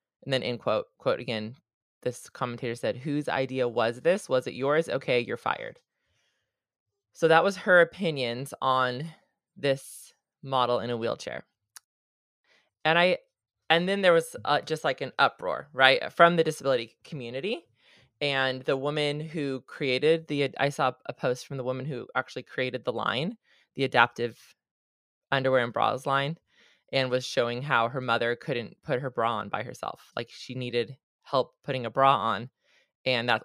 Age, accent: 20-39, American